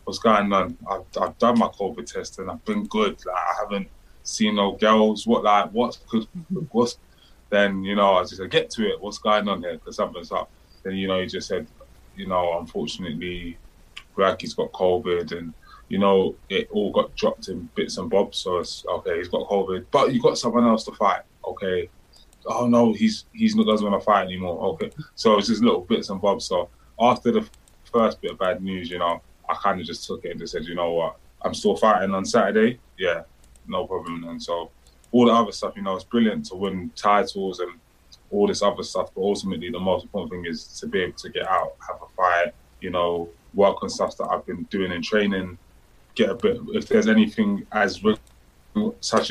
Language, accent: English, British